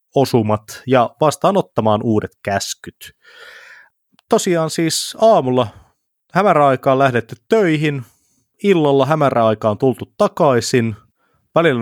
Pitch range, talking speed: 110-135 Hz, 85 wpm